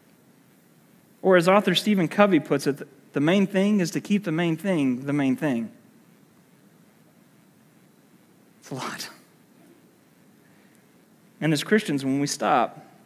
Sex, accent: male, American